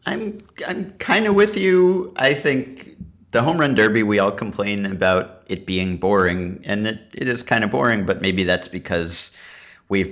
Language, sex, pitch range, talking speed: English, male, 90-120 Hz, 170 wpm